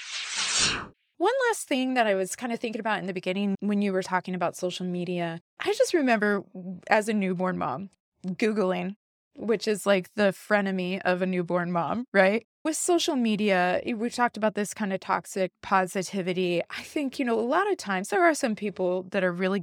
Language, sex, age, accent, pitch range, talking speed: English, female, 20-39, American, 185-235 Hz, 195 wpm